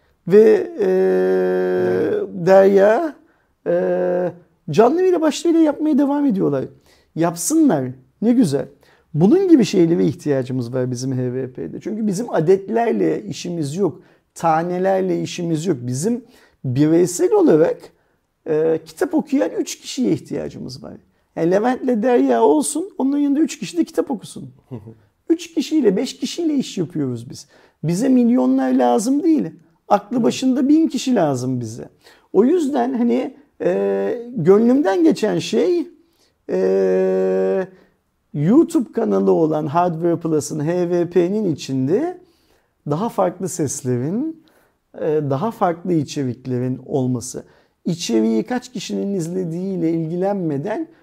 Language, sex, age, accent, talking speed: Turkish, male, 50-69, native, 115 wpm